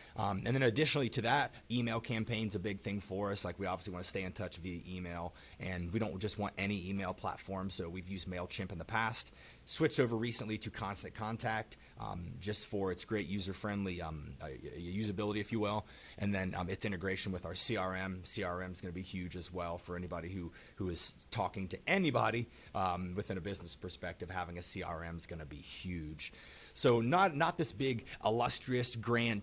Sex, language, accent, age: male, English, American, 30-49